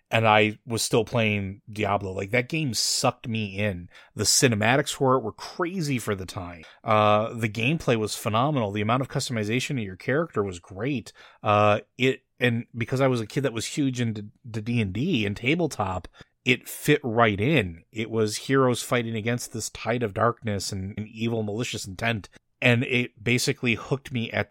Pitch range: 105-125 Hz